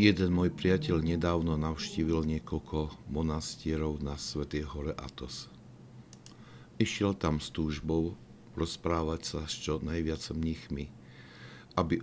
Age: 60-79